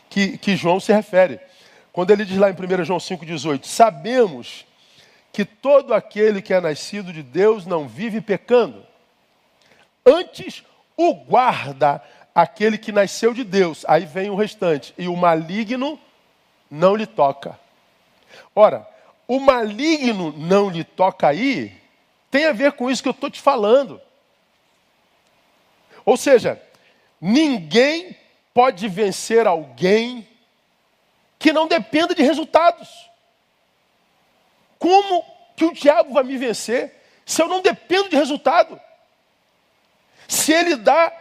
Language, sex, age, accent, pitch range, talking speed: Portuguese, male, 50-69, Brazilian, 210-310 Hz, 125 wpm